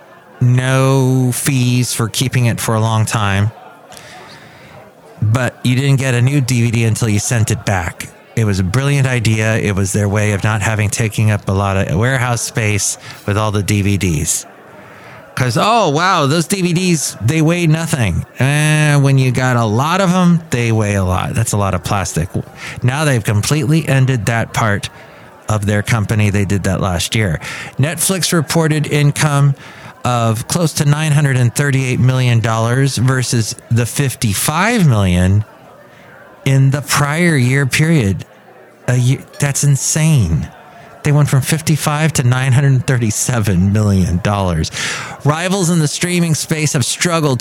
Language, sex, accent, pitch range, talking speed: English, male, American, 110-145 Hz, 160 wpm